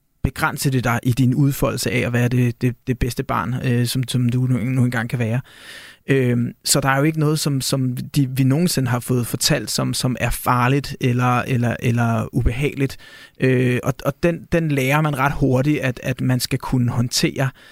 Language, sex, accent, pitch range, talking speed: Danish, male, native, 130-150 Hz, 195 wpm